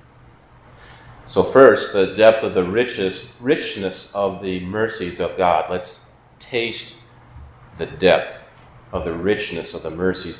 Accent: American